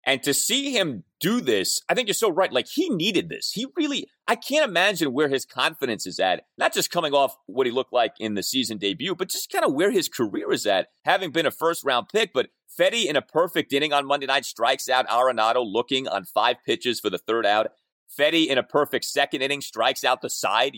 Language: English